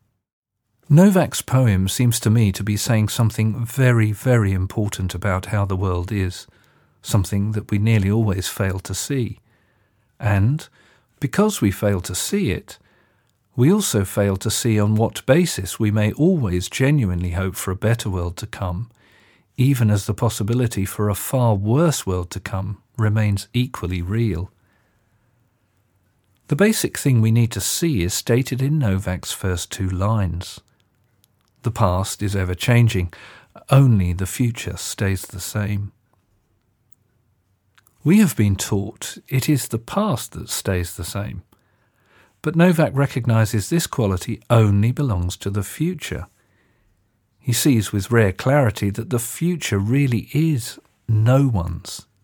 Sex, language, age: male, English, 40-59